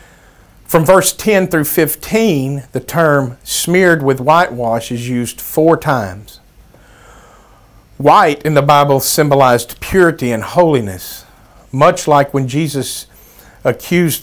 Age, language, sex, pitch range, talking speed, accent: 50-69, English, male, 115-155 Hz, 115 wpm, American